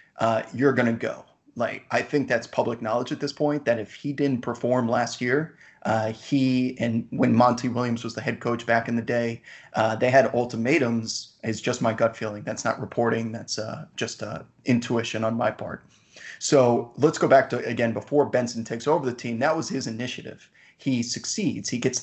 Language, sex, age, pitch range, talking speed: English, male, 30-49, 115-130 Hz, 205 wpm